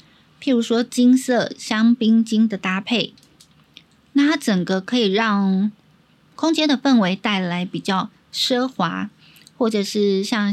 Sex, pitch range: female, 185-240 Hz